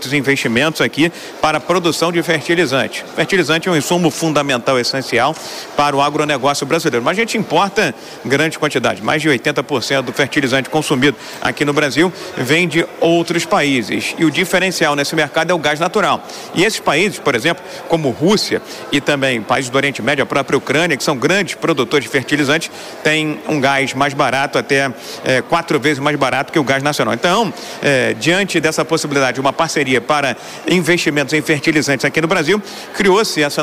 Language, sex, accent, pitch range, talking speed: Portuguese, male, Brazilian, 140-165 Hz, 175 wpm